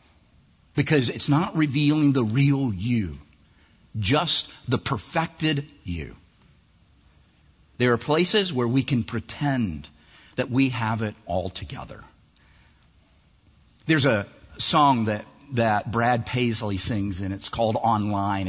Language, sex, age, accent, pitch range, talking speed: English, male, 50-69, American, 100-145 Hz, 115 wpm